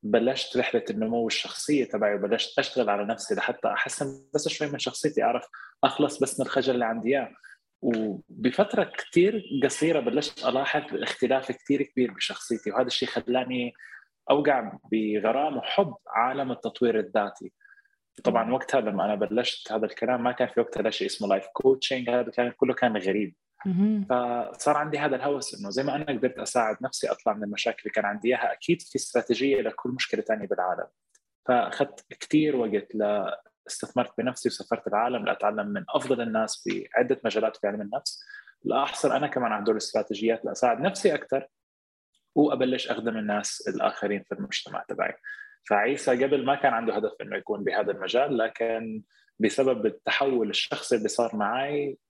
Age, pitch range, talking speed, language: 20-39, 110-145 Hz, 155 wpm, English